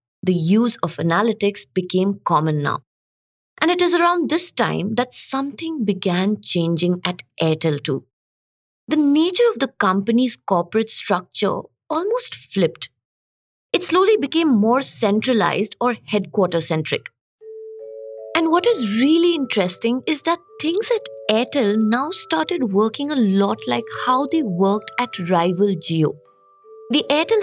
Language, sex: English, female